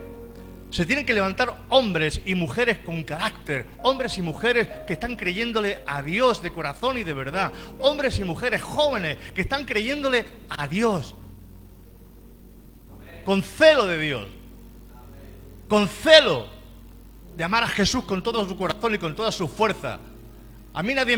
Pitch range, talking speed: 130-210 Hz, 150 wpm